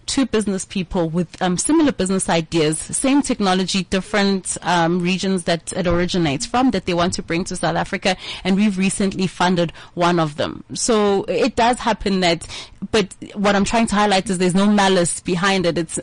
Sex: female